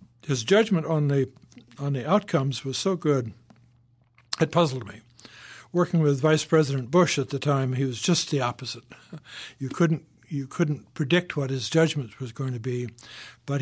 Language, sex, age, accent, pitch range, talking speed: English, male, 60-79, American, 130-160 Hz, 170 wpm